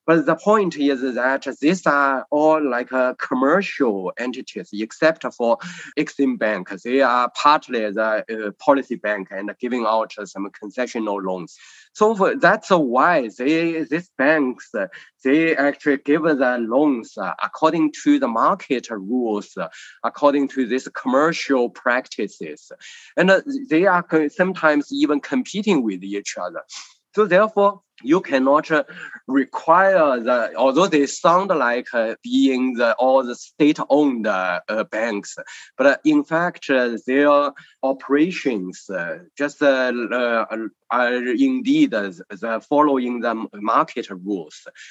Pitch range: 120-165 Hz